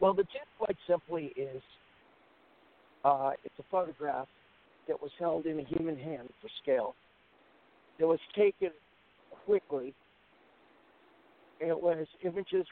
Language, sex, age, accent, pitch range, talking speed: English, male, 60-79, American, 130-165 Hz, 125 wpm